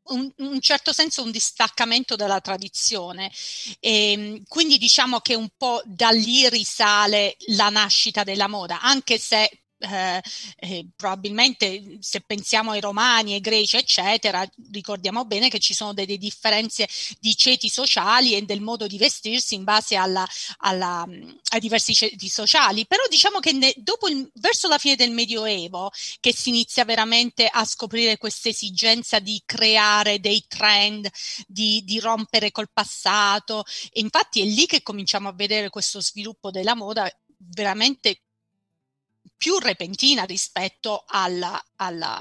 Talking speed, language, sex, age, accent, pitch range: 140 wpm, Italian, female, 30-49, native, 195-240 Hz